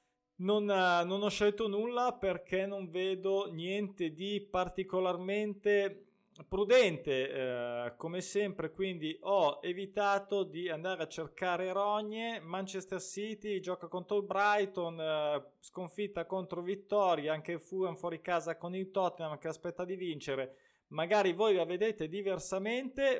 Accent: native